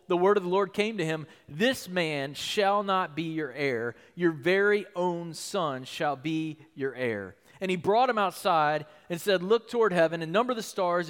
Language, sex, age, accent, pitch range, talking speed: English, male, 40-59, American, 160-210 Hz, 200 wpm